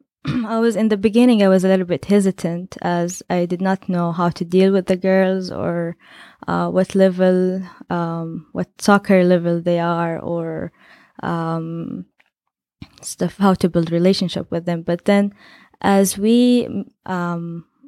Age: 20-39